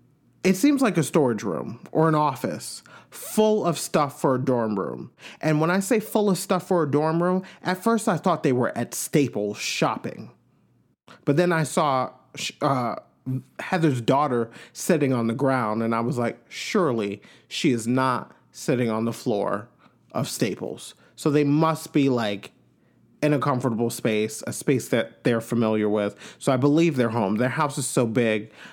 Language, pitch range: English, 120-170 Hz